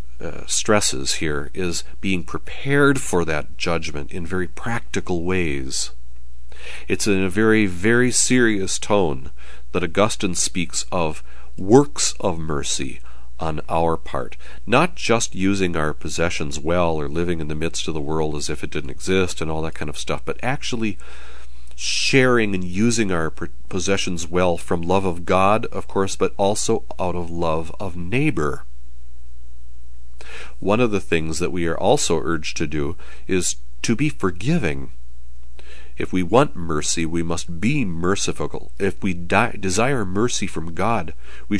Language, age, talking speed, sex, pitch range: English, 40-59, 155 wpm, male, 65-100 Hz